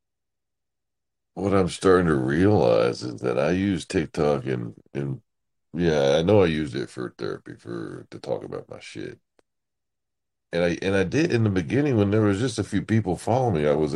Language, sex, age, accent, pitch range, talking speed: English, male, 50-69, American, 75-100 Hz, 195 wpm